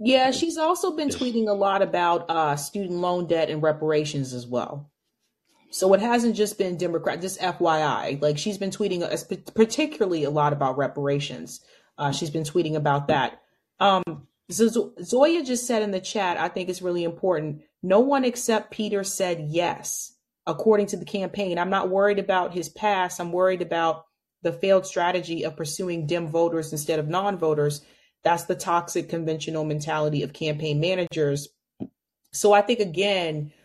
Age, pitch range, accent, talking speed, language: 30-49, 160-205 Hz, American, 175 wpm, English